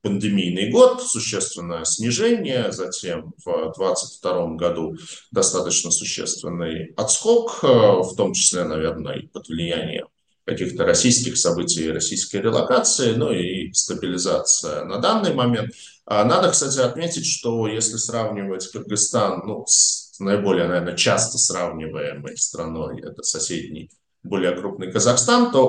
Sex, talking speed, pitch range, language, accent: male, 115 wpm, 95-150 Hz, Russian, native